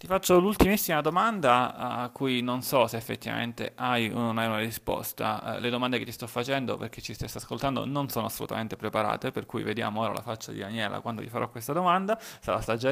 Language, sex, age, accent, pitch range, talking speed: Italian, male, 20-39, native, 110-135 Hz, 225 wpm